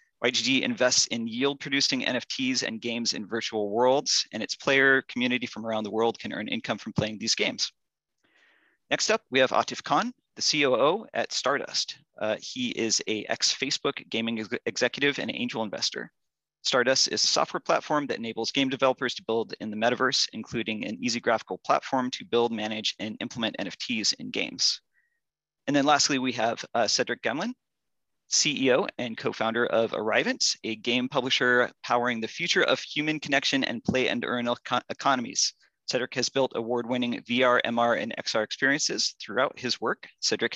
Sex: male